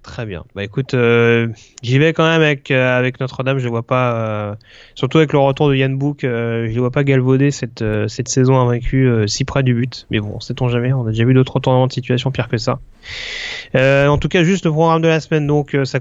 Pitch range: 130-160 Hz